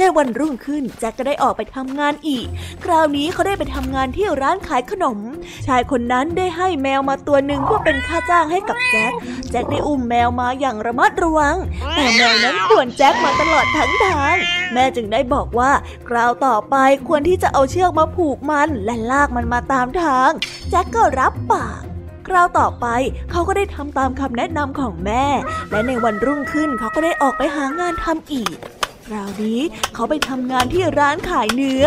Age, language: 20-39, Thai